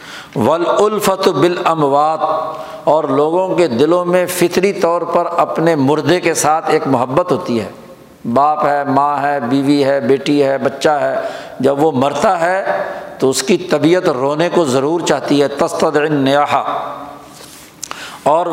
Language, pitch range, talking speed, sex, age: Urdu, 150-175 Hz, 140 wpm, male, 60-79